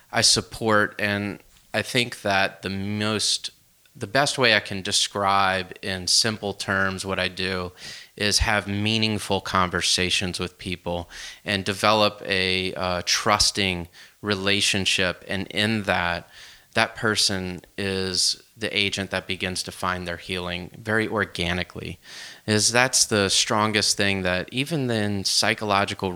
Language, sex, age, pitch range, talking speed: English, male, 30-49, 95-110 Hz, 130 wpm